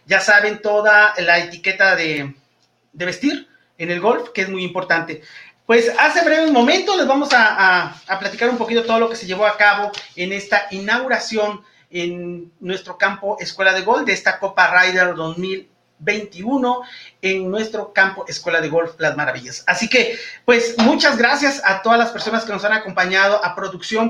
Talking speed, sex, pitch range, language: 180 wpm, male, 185-230 Hz, Spanish